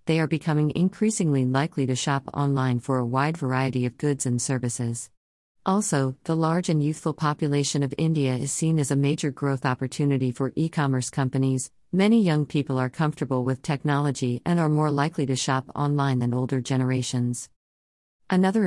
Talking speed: 165 wpm